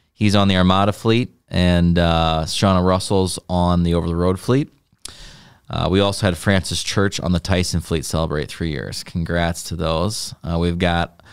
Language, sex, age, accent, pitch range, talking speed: English, male, 30-49, American, 85-105 Hz, 170 wpm